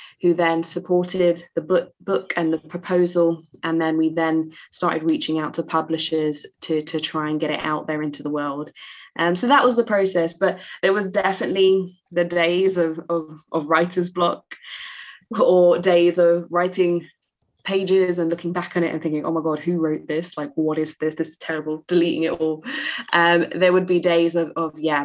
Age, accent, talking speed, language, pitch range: 20-39, British, 195 wpm, English, 160-175 Hz